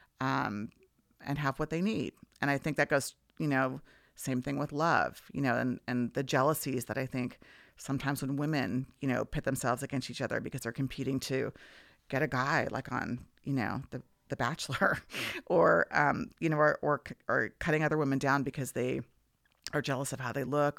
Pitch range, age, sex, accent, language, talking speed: 130-145 Hz, 30-49, female, American, English, 200 wpm